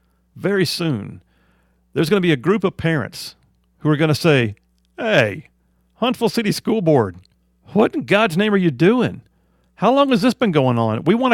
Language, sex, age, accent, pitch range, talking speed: English, male, 40-59, American, 110-185 Hz, 190 wpm